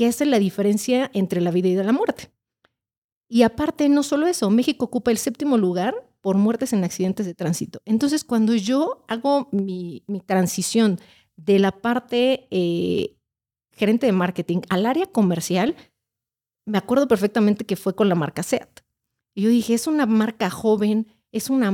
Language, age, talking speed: Spanish, 40-59, 170 wpm